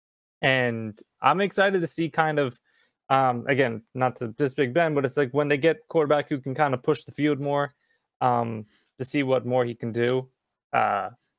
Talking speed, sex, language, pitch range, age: 200 wpm, male, English, 120-150 Hz, 20-39